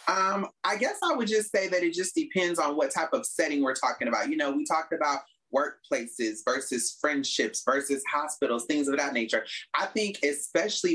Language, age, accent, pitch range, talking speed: English, 30-49, American, 135-225 Hz, 195 wpm